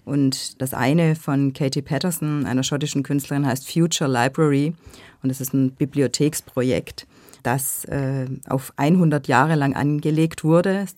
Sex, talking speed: female, 140 wpm